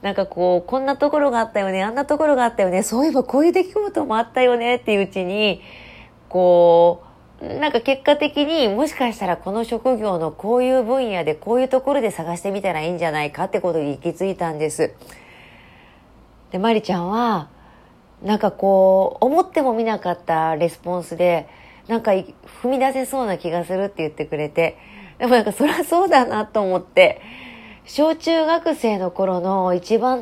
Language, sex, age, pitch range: Japanese, female, 30-49, 180-260 Hz